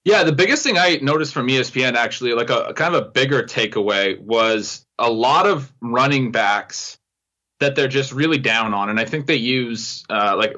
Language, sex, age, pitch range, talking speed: English, male, 20-39, 115-140 Hz, 200 wpm